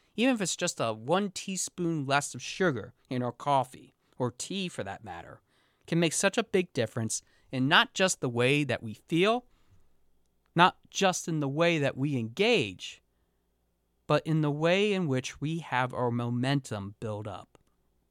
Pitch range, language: 115-185 Hz, English